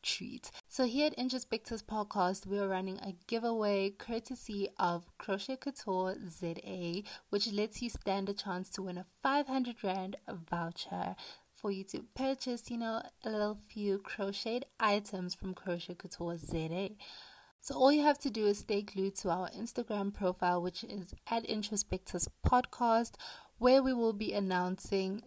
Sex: female